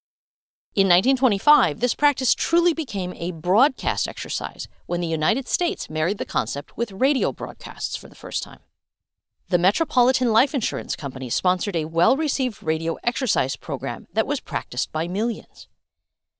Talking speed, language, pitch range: 145 wpm, English, 165-255 Hz